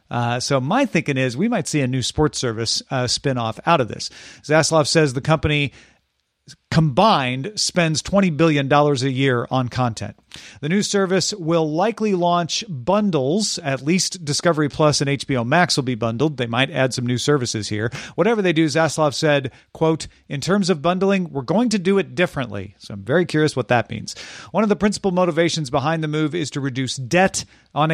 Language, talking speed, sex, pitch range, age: English, 195 wpm, male, 130-175 Hz, 40-59